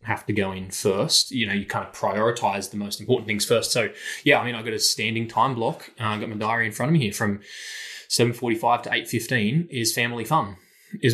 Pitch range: 110-130 Hz